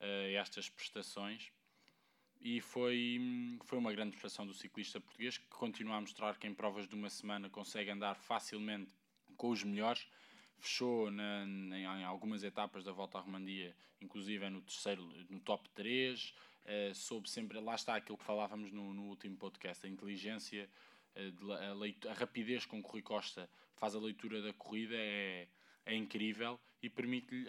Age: 20-39